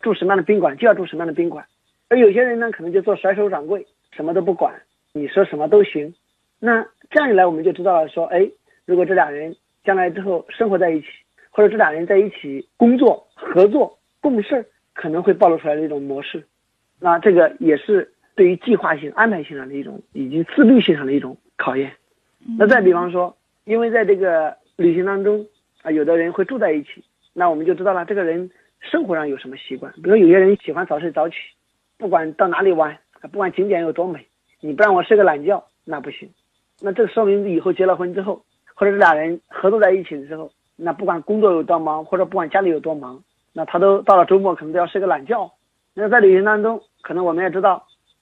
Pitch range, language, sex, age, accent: 165-210 Hz, Chinese, male, 50-69, native